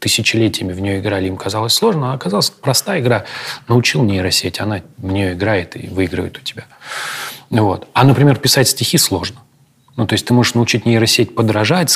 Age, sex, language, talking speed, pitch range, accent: 30-49, male, Russian, 170 wpm, 95-120 Hz, native